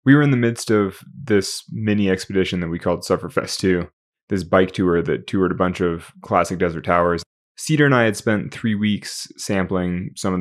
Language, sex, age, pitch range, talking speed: English, male, 20-39, 90-105 Hz, 200 wpm